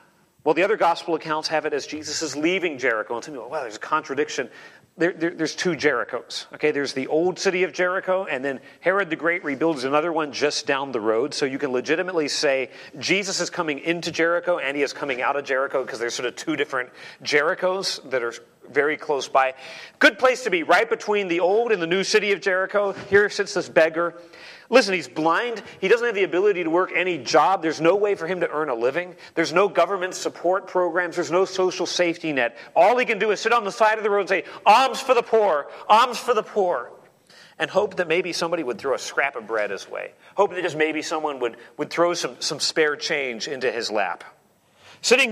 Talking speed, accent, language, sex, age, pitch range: 230 wpm, American, English, male, 40-59, 160-200 Hz